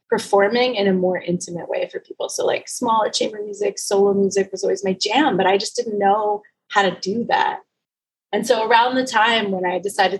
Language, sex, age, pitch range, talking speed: English, female, 20-39, 185-270 Hz, 210 wpm